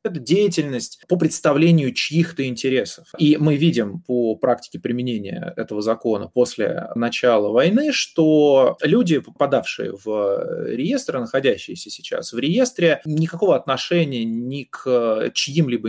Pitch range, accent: 115-165 Hz, native